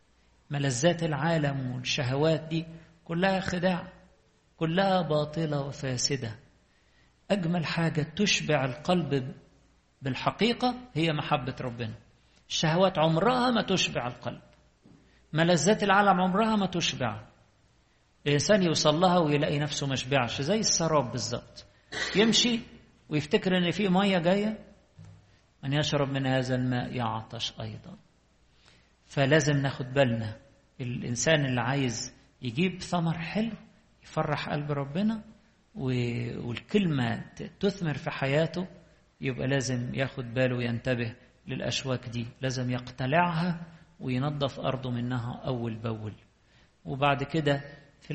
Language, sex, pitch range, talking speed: English, male, 130-175 Hz, 100 wpm